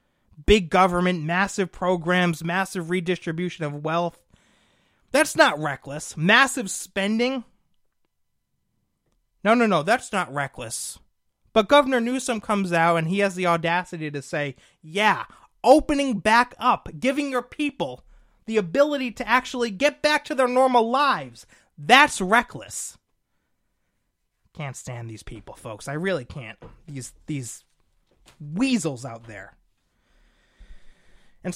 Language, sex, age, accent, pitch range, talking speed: English, male, 30-49, American, 150-240 Hz, 120 wpm